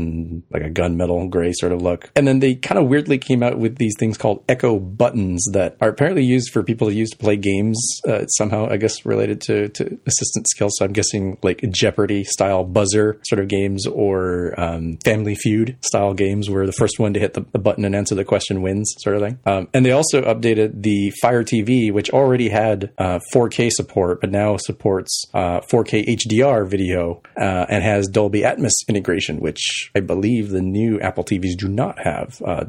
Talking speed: 205 wpm